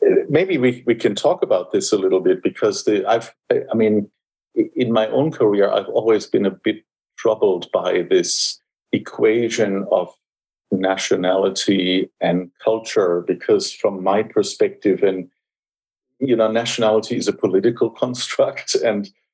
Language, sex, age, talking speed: English, male, 50-69, 135 wpm